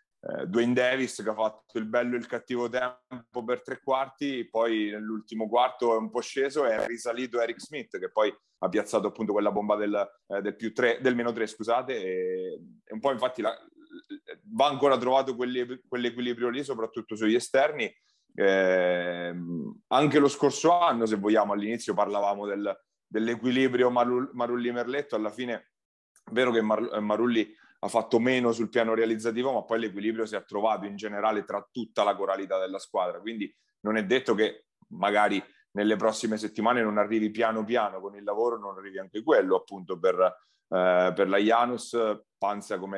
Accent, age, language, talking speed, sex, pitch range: native, 30-49, Italian, 175 wpm, male, 100-125 Hz